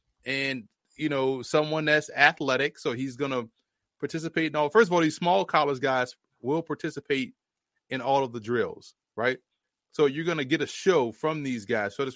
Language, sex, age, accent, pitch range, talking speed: English, male, 30-49, American, 125-155 Hz, 195 wpm